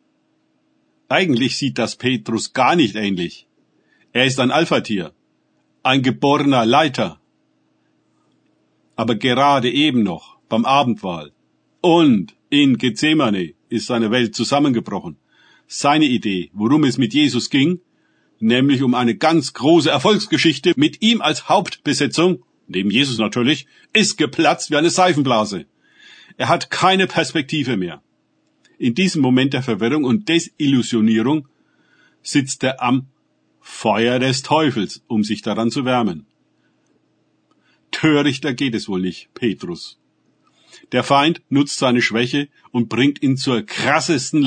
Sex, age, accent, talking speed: male, 50-69, German, 125 wpm